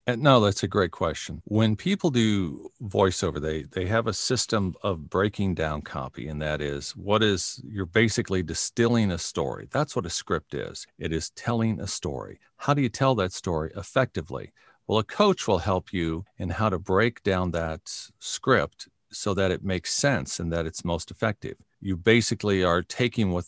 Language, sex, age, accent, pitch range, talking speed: English, male, 50-69, American, 90-115 Hz, 185 wpm